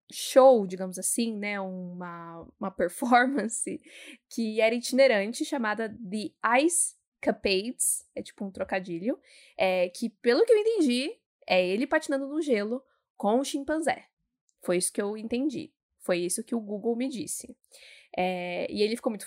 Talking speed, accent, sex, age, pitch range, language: 155 wpm, Brazilian, female, 10-29, 210-275 Hz, Portuguese